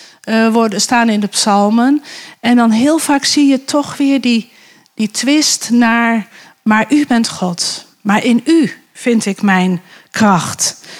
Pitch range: 200-260 Hz